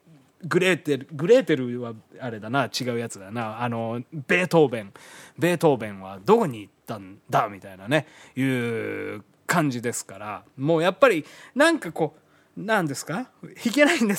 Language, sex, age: Japanese, male, 20-39